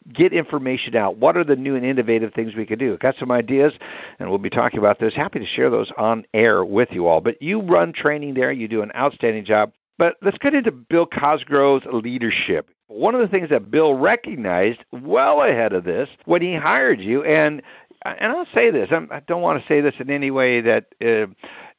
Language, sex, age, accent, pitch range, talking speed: English, male, 60-79, American, 125-190 Hz, 220 wpm